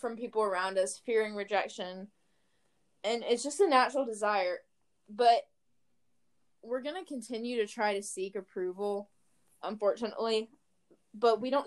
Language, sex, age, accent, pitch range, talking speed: English, female, 10-29, American, 195-240 Hz, 130 wpm